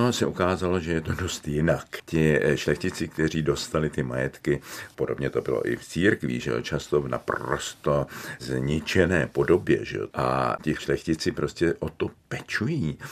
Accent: native